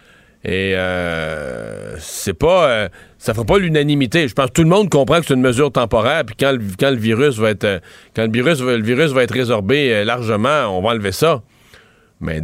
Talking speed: 215 wpm